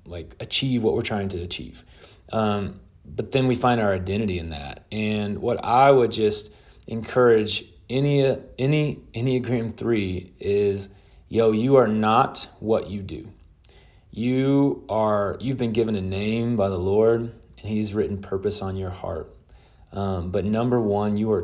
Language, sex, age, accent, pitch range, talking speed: English, male, 30-49, American, 95-115 Hz, 160 wpm